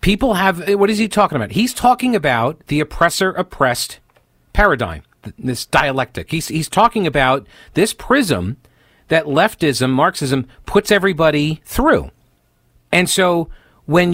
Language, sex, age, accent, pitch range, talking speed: English, male, 40-59, American, 125-185 Hz, 125 wpm